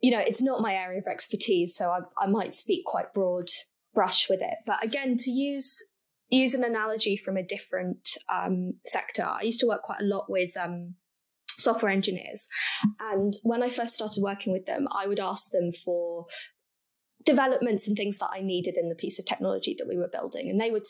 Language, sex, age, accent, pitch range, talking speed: English, female, 20-39, British, 190-255 Hz, 205 wpm